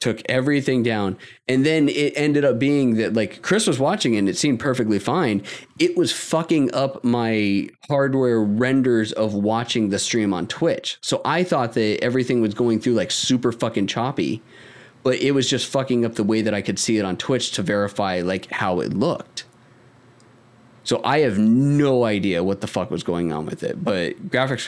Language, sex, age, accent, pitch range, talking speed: English, male, 30-49, American, 100-125 Hz, 195 wpm